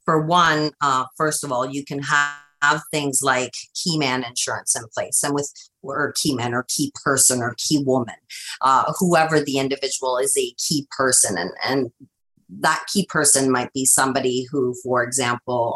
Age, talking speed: 40-59, 180 wpm